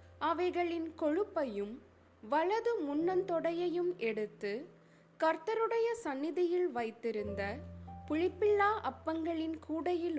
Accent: native